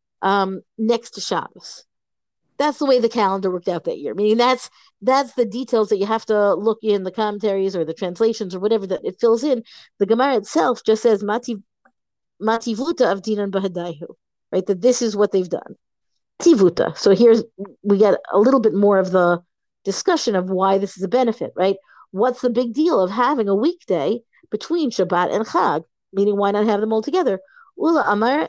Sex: female